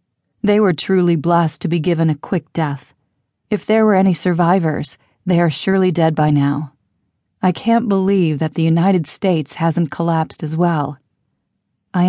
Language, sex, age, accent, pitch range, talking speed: English, female, 40-59, American, 155-200 Hz, 165 wpm